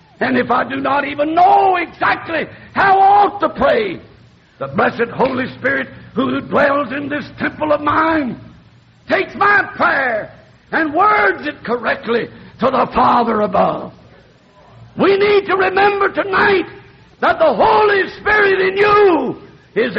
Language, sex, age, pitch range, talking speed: English, male, 60-79, 205-315 Hz, 140 wpm